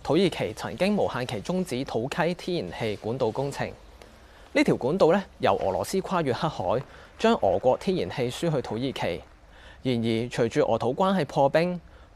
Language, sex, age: Chinese, male, 20-39